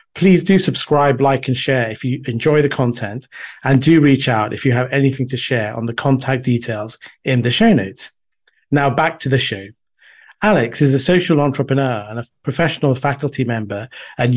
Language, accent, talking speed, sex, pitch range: English, British, 190 wpm, male, 125-155 Hz